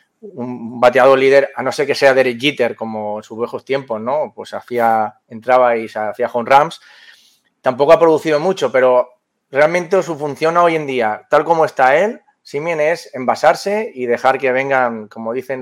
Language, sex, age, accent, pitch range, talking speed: Spanish, male, 30-49, Spanish, 120-150 Hz, 180 wpm